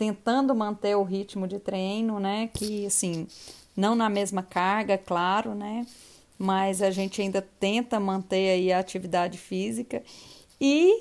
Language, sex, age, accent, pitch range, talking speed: Portuguese, female, 30-49, Brazilian, 200-230 Hz, 140 wpm